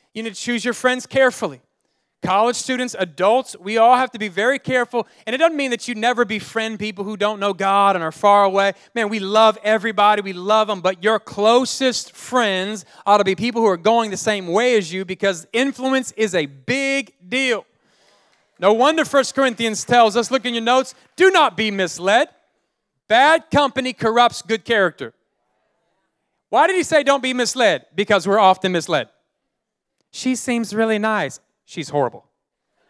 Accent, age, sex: American, 30-49, male